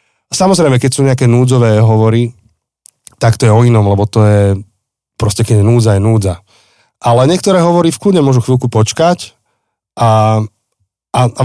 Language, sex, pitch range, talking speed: Slovak, male, 110-125 Hz, 160 wpm